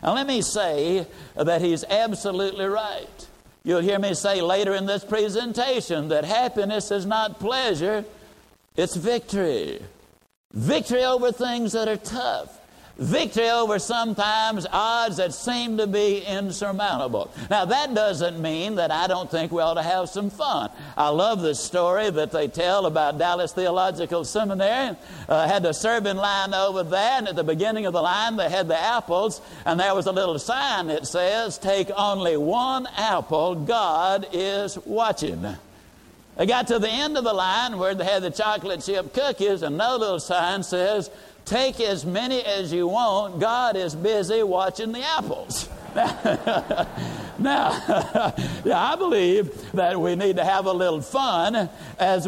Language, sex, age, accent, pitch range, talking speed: English, male, 60-79, American, 180-225 Hz, 160 wpm